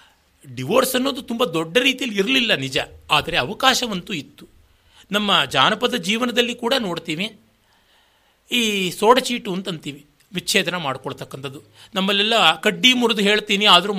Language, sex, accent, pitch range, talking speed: Kannada, male, native, 155-220 Hz, 105 wpm